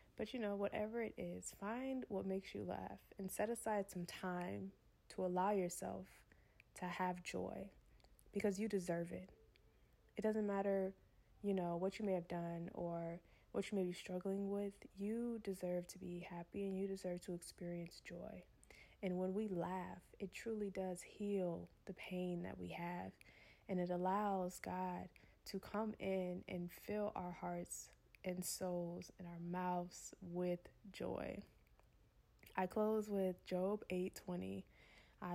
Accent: American